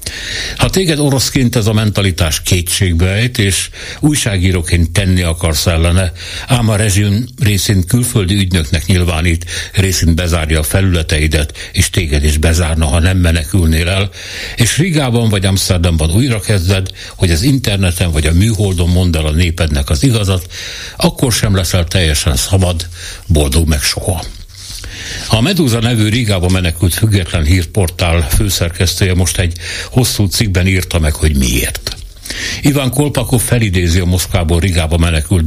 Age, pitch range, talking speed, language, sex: 60-79, 85-105 Hz, 135 wpm, Hungarian, male